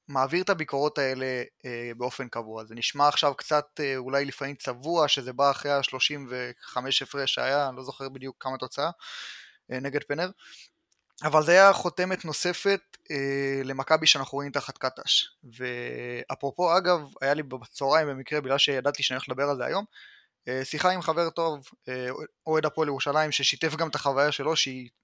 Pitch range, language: 130-155 Hz, Hebrew